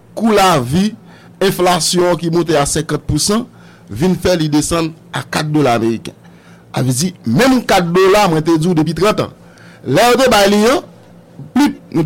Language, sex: English, male